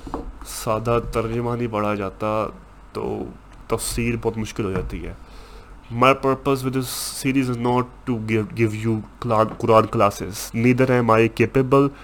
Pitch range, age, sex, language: 110-130 Hz, 20-39, male, Urdu